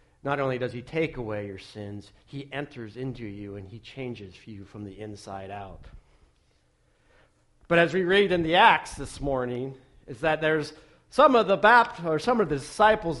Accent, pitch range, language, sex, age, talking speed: American, 115-160 Hz, English, male, 50-69, 185 wpm